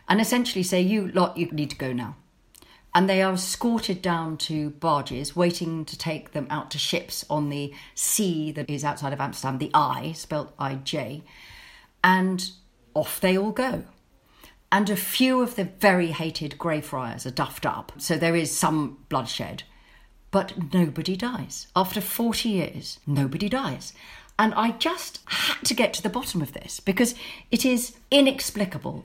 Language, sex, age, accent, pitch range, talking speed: English, female, 50-69, British, 145-205 Hz, 165 wpm